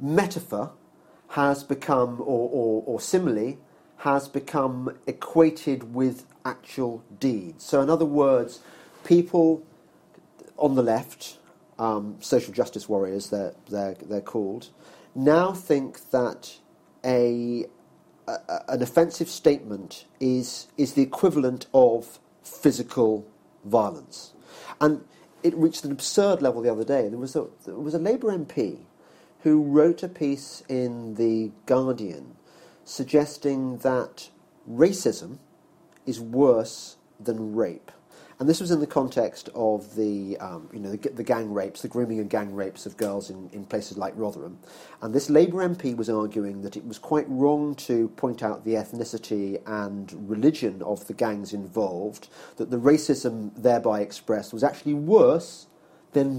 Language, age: English, 40-59